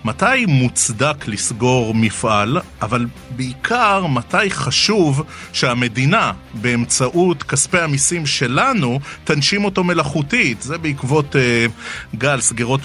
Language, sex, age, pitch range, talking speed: Hebrew, male, 30-49, 115-155 Hz, 100 wpm